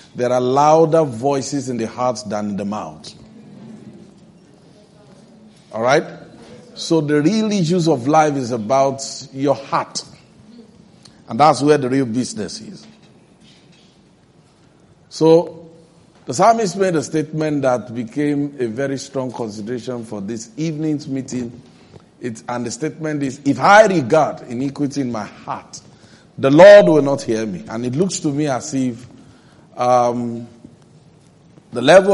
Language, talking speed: English, 135 wpm